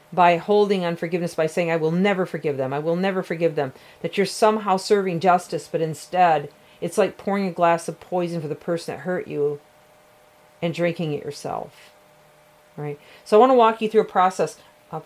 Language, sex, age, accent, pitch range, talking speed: English, female, 40-59, American, 160-210 Hz, 205 wpm